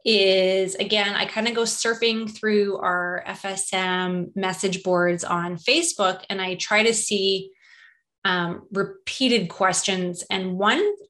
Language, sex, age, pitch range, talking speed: English, female, 20-39, 190-255 Hz, 130 wpm